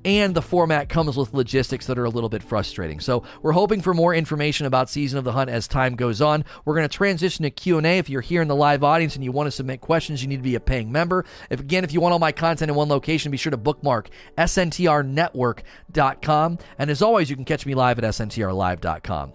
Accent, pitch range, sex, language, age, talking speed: American, 125-160 Hz, male, English, 30-49, 245 wpm